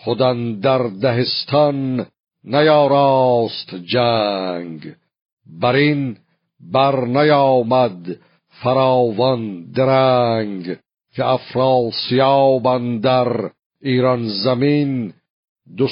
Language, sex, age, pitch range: Persian, male, 50-69, 120-140 Hz